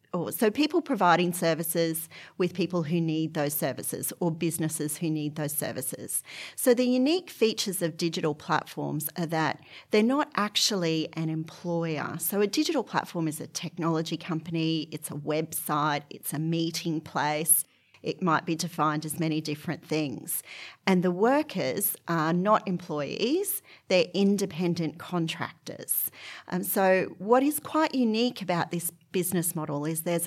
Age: 40-59